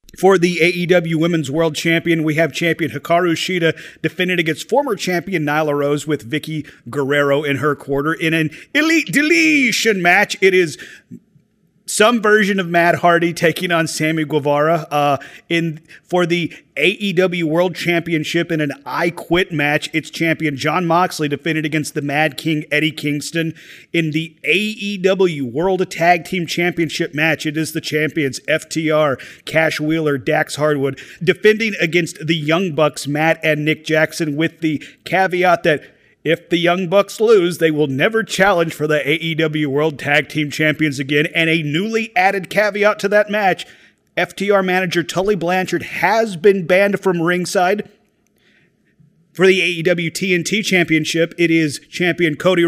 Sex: male